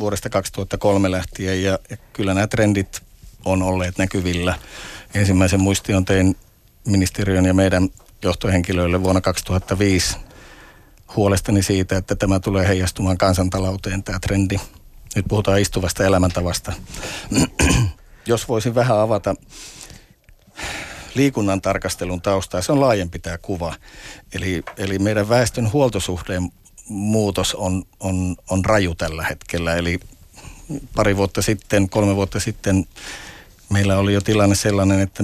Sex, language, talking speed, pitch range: male, Finnish, 115 wpm, 95-100 Hz